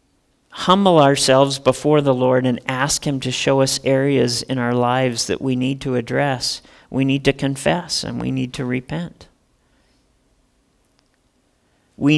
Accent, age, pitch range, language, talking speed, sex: American, 40-59, 130-160 Hz, English, 150 wpm, male